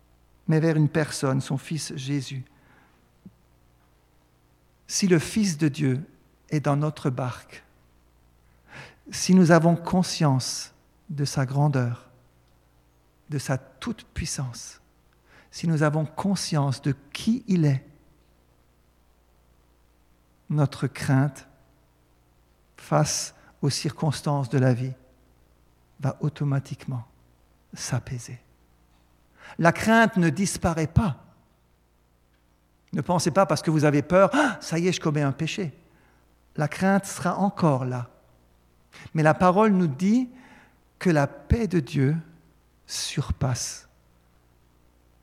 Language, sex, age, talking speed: French, male, 50-69, 105 wpm